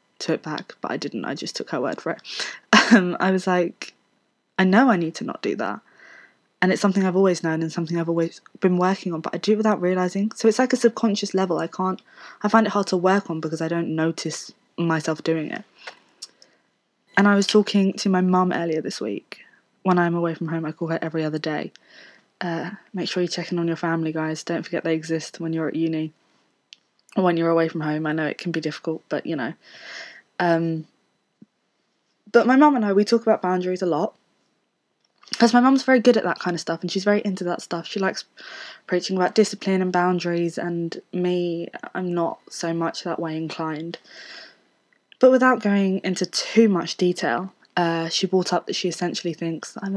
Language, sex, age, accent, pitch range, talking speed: English, female, 20-39, British, 165-200 Hz, 215 wpm